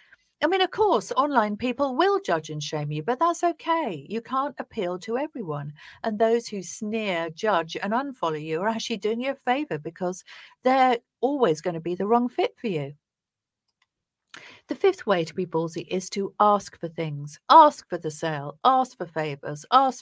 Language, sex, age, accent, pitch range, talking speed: English, female, 50-69, British, 170-255 Hz, 190 wpm